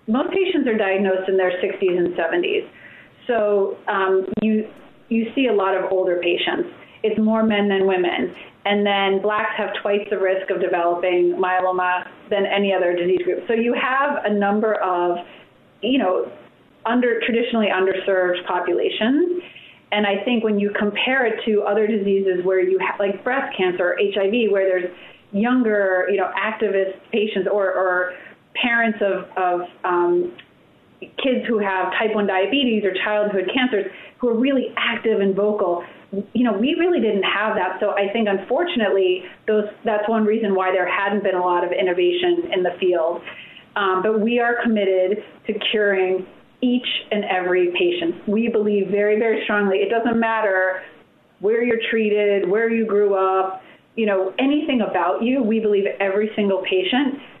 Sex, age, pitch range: female, 30-49, 190-225 Hz